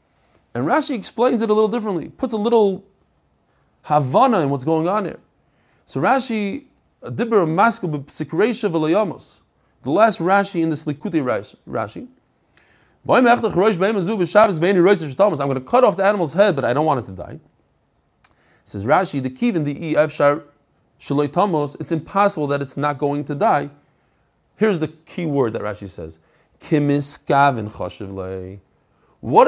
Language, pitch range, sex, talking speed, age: English, 145-215 Hz, male, 130 wpm, 30-49